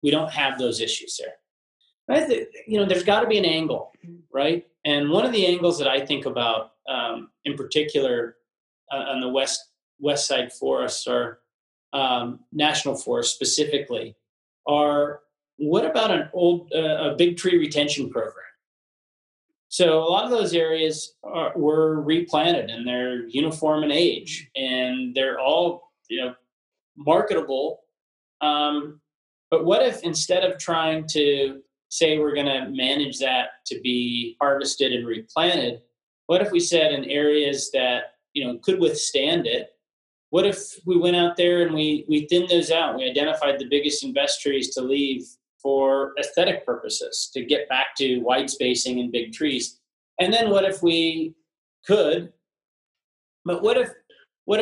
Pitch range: 135-175 Hz